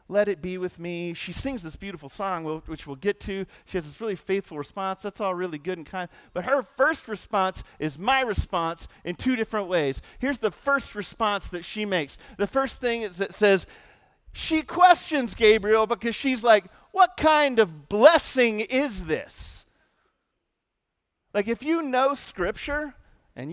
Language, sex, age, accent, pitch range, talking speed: English, male, 40-59, American, 185-265 Hz, 175 wpm